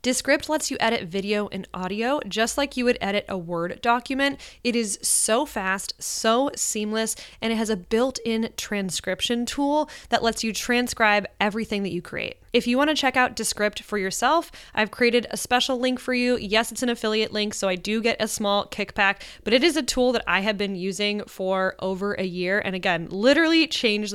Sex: female